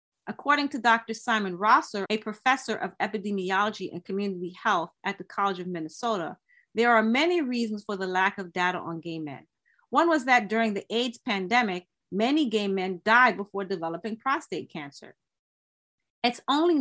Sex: female